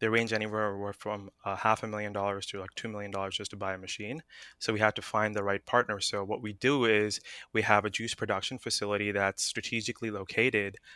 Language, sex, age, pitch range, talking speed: English, male, 20-39, 100-110 Hz, 225 wpm